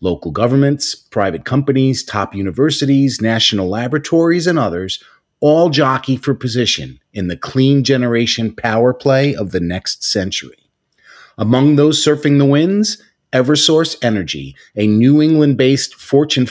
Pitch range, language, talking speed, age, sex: 105-140 Hz, English, 125 wpm, 40-59, male